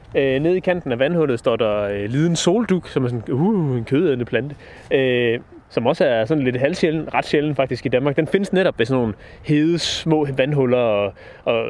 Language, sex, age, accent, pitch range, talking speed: Danish, male, 30-49, native, 115-165 Hz, 205 wpm